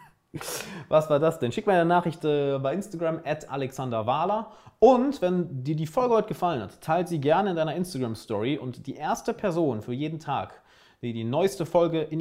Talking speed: 190 wpm